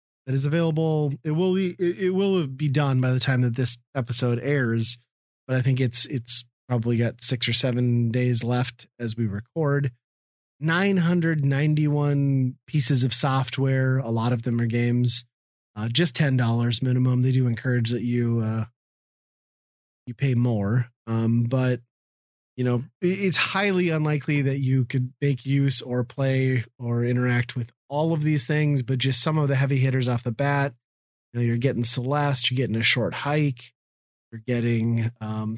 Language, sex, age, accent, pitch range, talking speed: English, male, 30-49, American, 120-145 Hz, 165 wpm